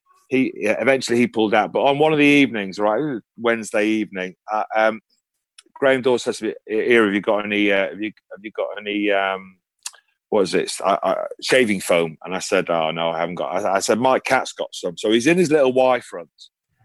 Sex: male